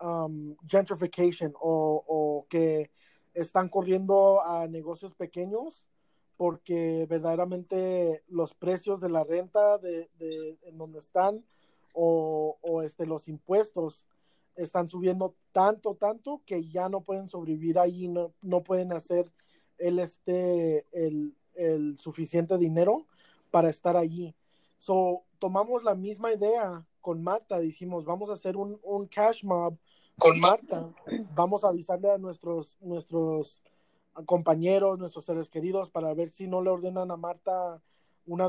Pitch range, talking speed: 160-185 Hz, 135 wpm